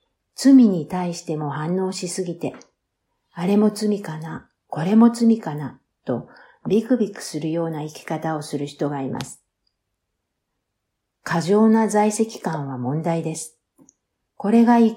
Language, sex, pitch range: Japanese, female, 145-195 Hz